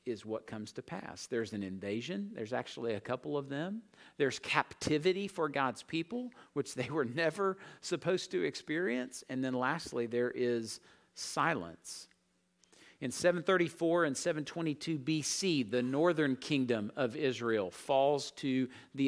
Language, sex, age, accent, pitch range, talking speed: English, male, 50-69, American, 125-180 Hz, 140 wpm